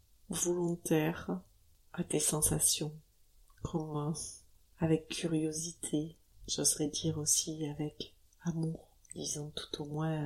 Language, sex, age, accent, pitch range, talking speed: French, female, 30-49, French, 100-165 Hz, 95 wpm